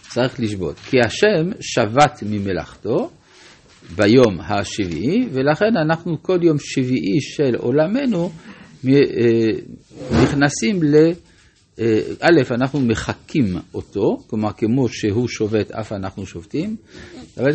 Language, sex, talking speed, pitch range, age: Hebrew, male, 100 wpm, 110-150 Hz, 50-69